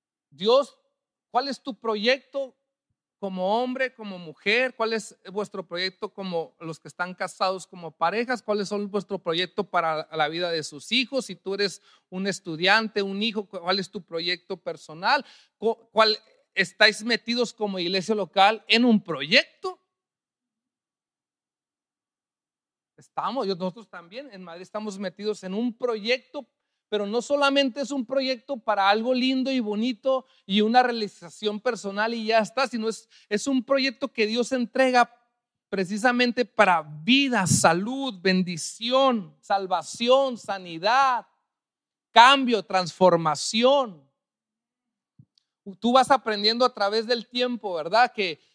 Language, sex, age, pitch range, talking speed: Spanish, male, 40-59, 190-250 Hz, 130 wpm